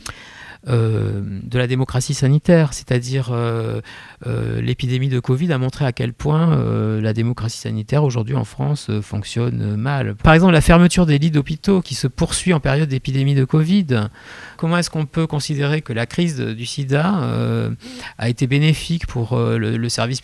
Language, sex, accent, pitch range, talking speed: French, male, French, 125-160 Hz, 180 wpm